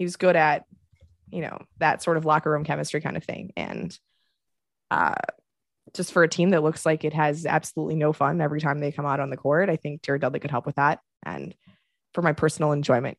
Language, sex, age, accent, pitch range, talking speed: English, female, 20-39, American, 150-185 Hz, 230 wpm